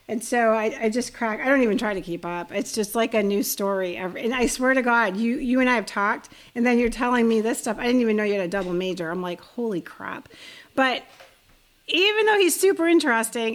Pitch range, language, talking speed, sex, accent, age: 210-260 Hz, English, 250 wpm, female, American, 40-59